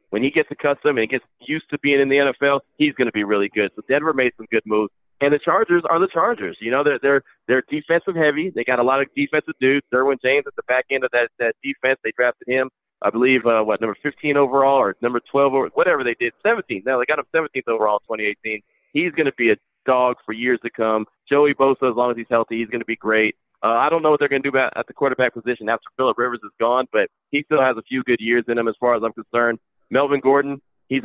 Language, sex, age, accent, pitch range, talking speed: English, male, 40-59, American, 115-140 Hz, 265 wpm